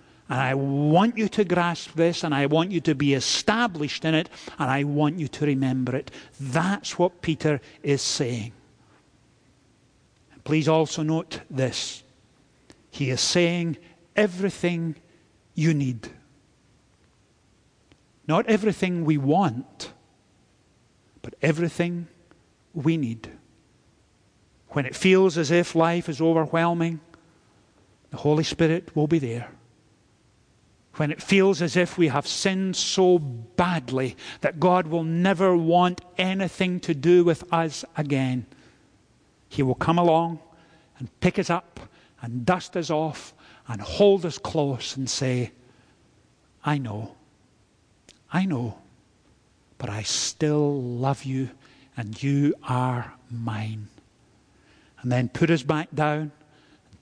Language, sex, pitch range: English, male, 130-170 Hz